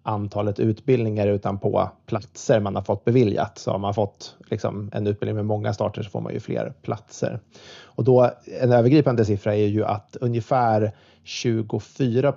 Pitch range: 105-125 Hz